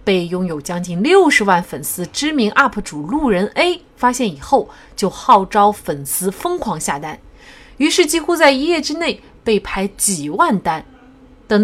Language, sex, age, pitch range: Chinese, female, 30-49, 175-265 Hz